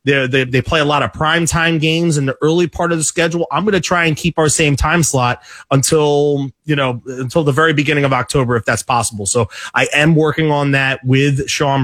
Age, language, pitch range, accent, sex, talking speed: 30-49, English, 130-165 Hz, American, male, 230 wpm